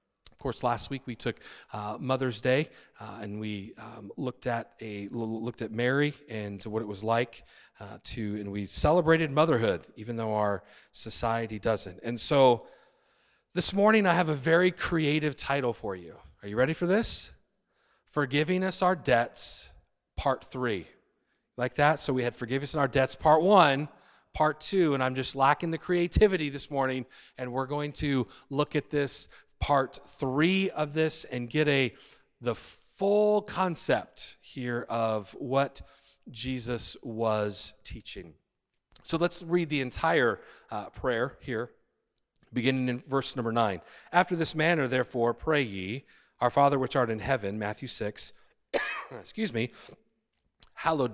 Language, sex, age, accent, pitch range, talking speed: English, male, 40-59, American, 115-150 Hz, 155 wpm